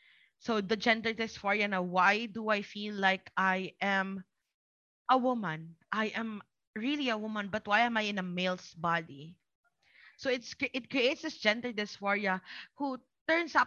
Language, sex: Filipino, female